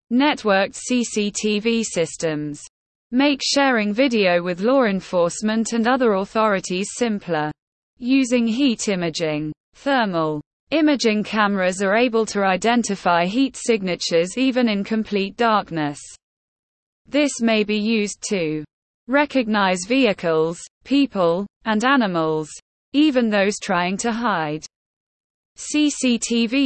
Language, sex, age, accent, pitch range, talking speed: English, female, 20-39, British, 175-245 Hz, 100 wpm